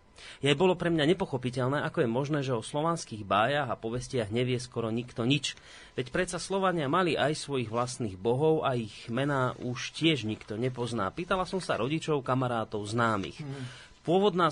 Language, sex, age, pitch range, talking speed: Slovak, male, 30-49, 115-150 Hz, 165 wpm